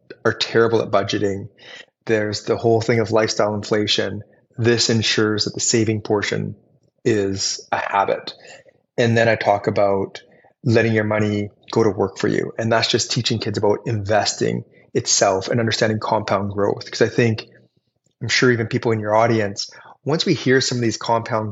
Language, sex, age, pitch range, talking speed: English, male, 20-39, 105-120 Hz, 175 wpm